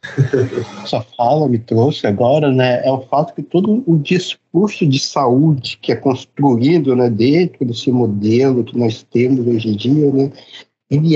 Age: 50-69